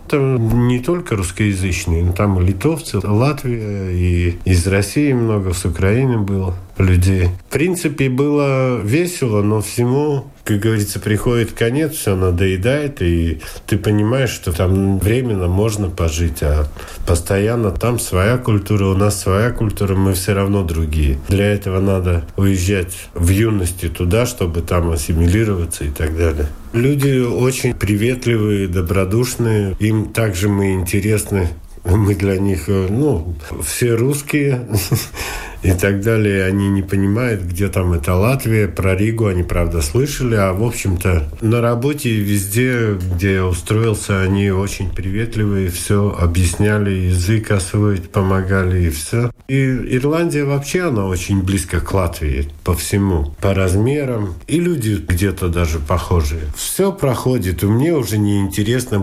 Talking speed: 135 wpm